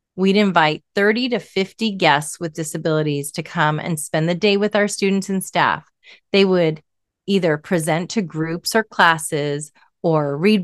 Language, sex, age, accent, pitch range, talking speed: English, female, 30-49, American, 165-210 Hz, 165 wpm